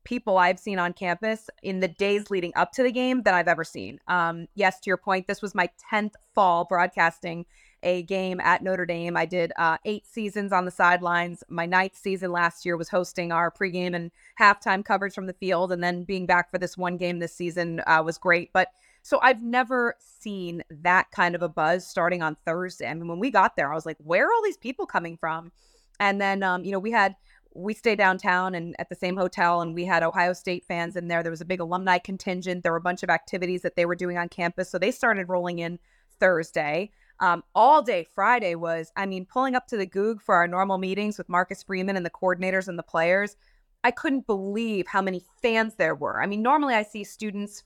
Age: 20-39